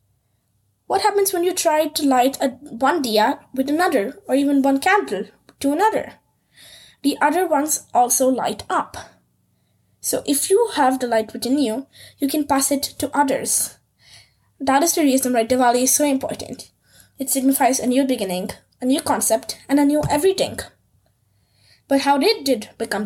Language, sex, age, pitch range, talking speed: English, female, 20-39, 230-290 Hz, 165 wpm